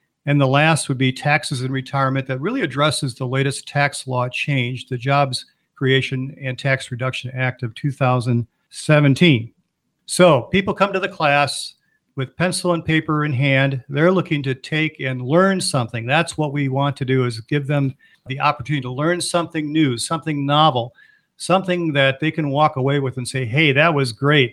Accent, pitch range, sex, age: American, 135-165 Hz, male, 50-69